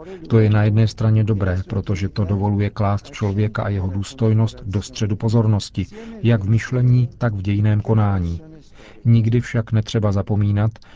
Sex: male